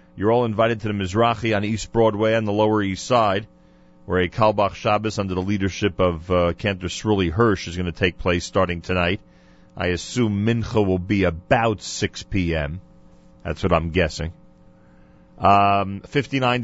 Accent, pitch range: American, 90-125 Hz